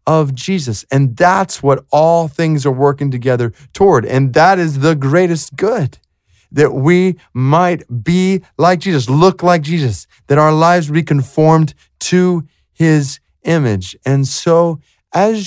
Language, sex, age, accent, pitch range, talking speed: English, male, 30-49, American, 125-155 Hz, 145 wpm